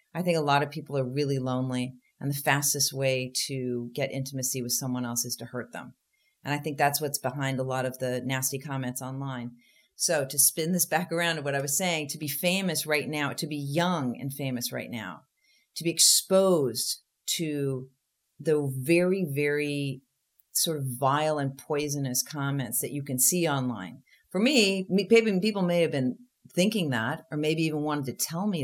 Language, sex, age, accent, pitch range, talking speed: English, female, 40-59, American, 135-165 Hz, 195 wpm